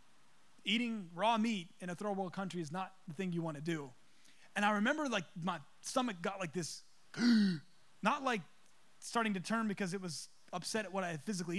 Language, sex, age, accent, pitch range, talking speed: English, male, 20-39, American, 185-245 Hz, 195 wpm